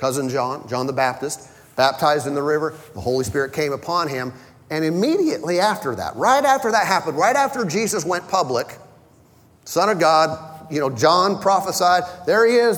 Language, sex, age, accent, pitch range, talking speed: English, male, 40-59, American, 150-205 Hz, 180 wpm